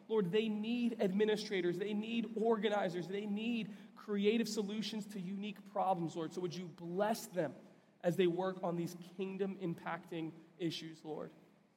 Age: 20-39